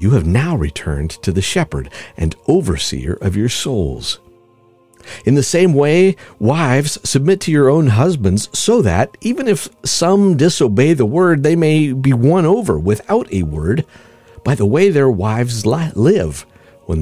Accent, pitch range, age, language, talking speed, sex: American, 90-145 Hz, 50-69, English, 160 wpm, male